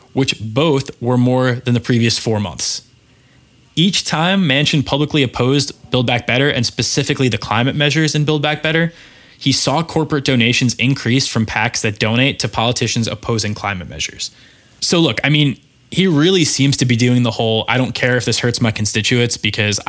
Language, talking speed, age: English, 185 wpm, 20-39